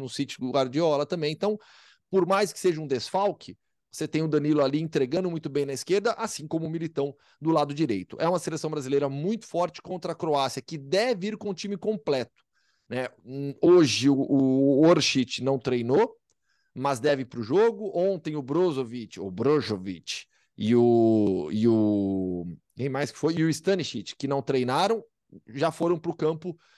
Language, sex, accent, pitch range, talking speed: Portuguese, male, Brazilian, 135-180 Hz, 185 wpm